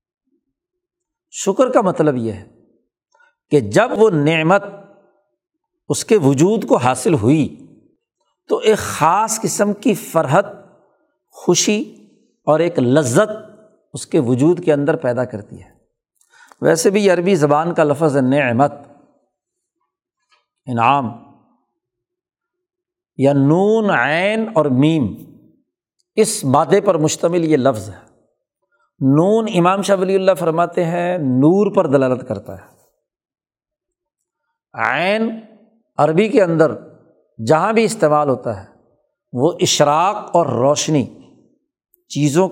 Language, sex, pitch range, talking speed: Urdu, male, 145-220 Hz, 110 wpm